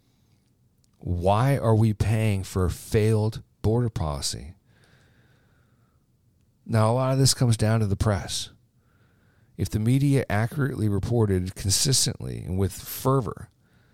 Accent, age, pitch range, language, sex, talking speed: American, 40-59, 100-120 Hz, English, male, 120 wpm